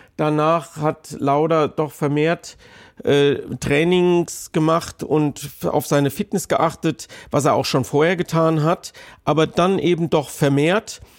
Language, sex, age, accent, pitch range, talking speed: German, male, 50-69, German, 150-175 Hz, 135 wpm